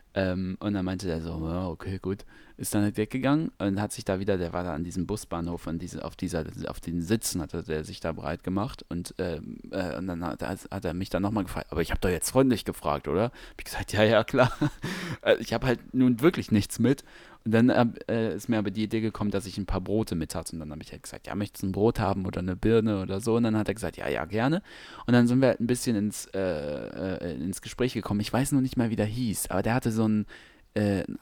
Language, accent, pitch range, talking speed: German, German, 90-115 Hz, 250 wpm